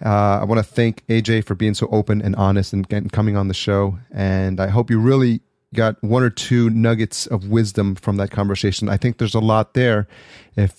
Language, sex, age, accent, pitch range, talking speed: English, male, 30-49, American, 100-115 Hz, 215 wpm